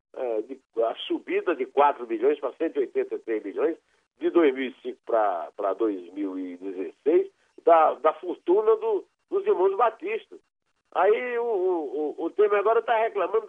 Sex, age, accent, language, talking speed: male, 60-79, Brazilian, Portuguese, 130 wpm